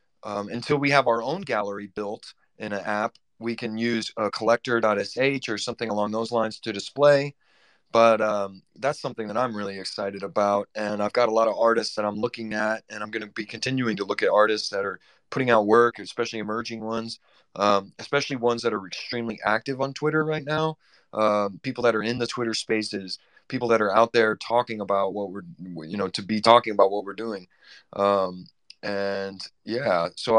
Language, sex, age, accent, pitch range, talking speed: English, male, 30-49, American, 100-120 Hz, 205 wpm